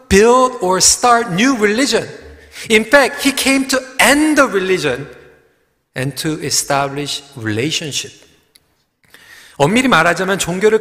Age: 40-59